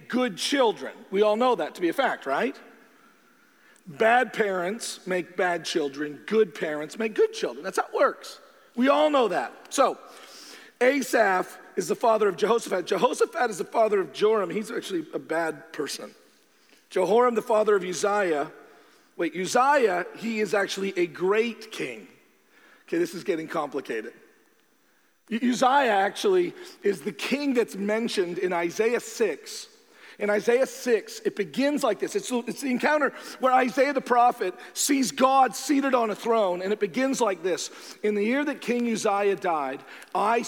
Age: 40-59